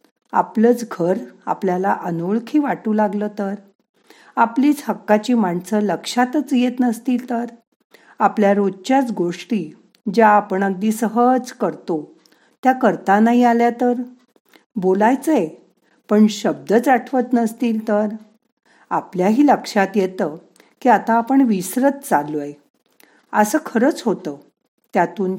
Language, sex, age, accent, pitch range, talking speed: Marathi, female, 50-69, native, 185-245 Hz, 105 wpm